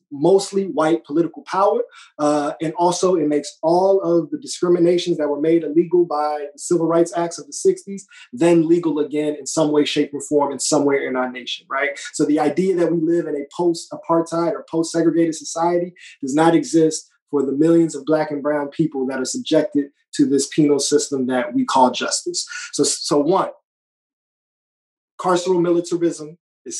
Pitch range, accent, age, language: 145-170 Hz, American, 20-39, English